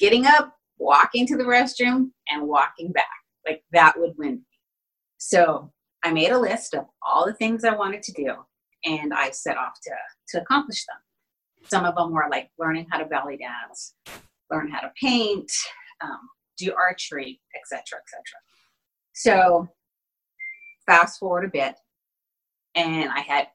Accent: American